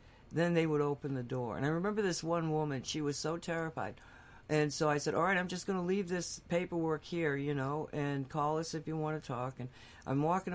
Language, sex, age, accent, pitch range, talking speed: English, female, 60-79, American, 140-195 Hz, 245 wpm